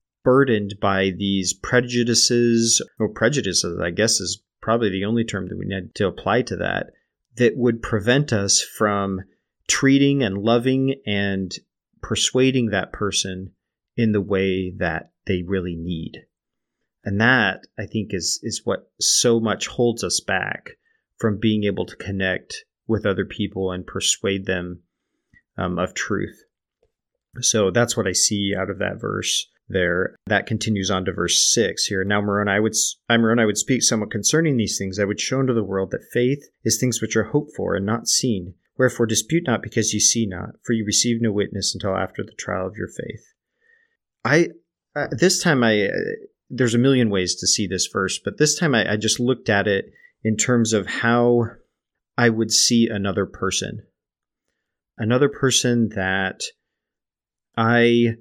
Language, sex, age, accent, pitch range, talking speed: English, male, 30-49, American, 100-120 Hz, 170 wpm